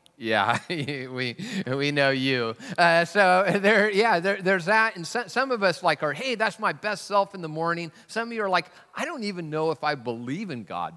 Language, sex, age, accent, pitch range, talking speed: English, male, 40-59, American, 135-190 Hz, 225 wpm